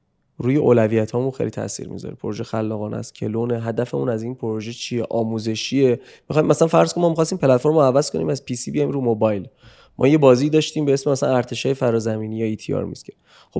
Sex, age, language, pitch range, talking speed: male, 20-39, Persian, 115-135 Hz, 195 wpm